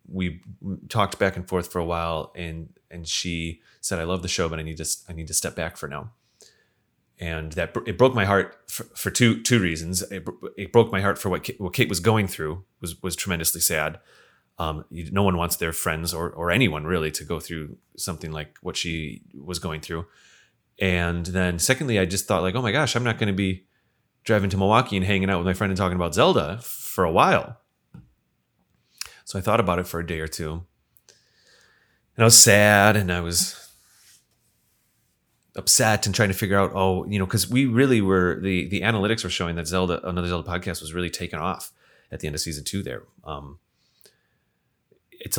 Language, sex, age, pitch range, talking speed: English, male, 30-49, 85-105 Hz, 210 wpm